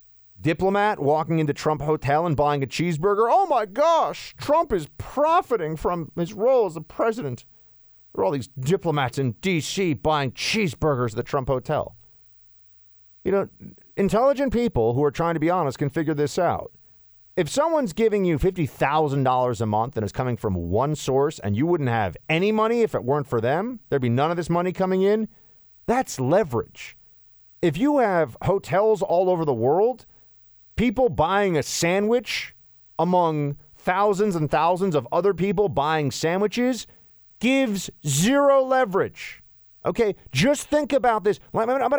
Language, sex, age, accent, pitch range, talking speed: English, male, 40-59, American, 125-210 Hz, 160 wpm